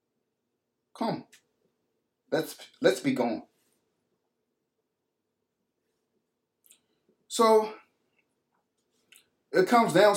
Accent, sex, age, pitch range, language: American, male, 30-49, 155-205 Hz, English